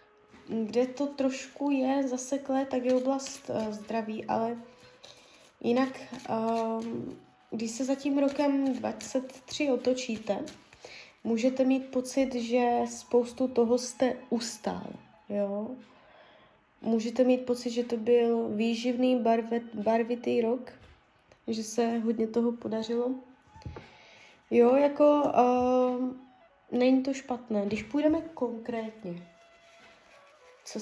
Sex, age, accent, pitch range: female, 20-39, native, 235-265 Hz